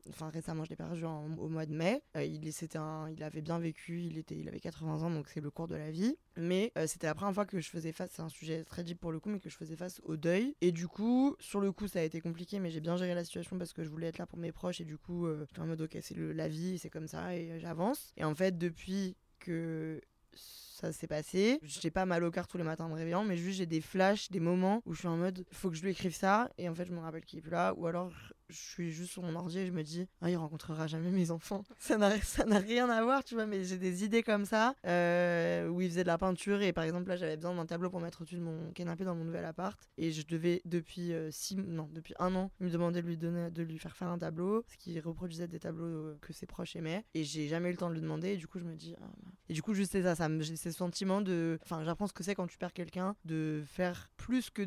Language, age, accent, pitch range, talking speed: French, 20-39, French, 165-185 Hz, 300 wpm